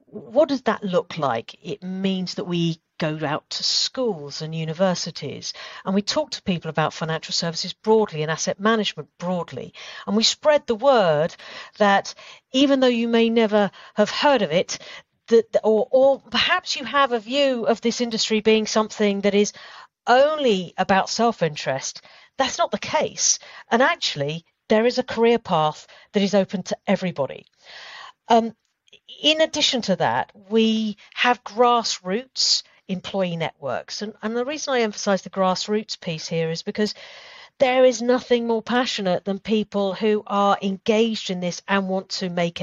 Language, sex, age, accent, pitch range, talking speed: English, female, 50-69, British, 185-245 Hz, 160 wpm